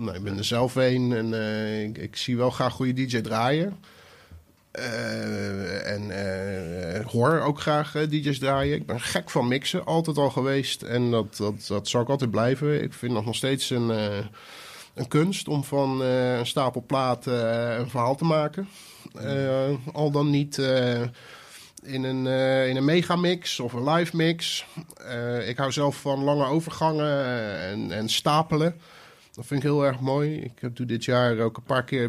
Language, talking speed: Dutch, 185 wpm